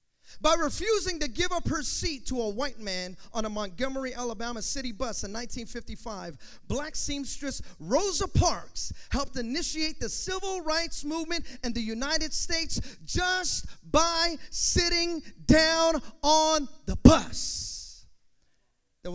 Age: 30-49